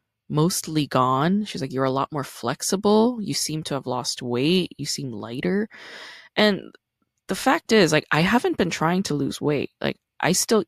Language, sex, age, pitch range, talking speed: English, female, 20-39, 135-175 Hz, 185 wpm